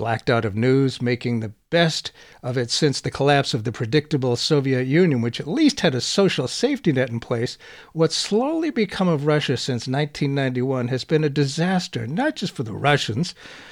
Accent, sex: American, male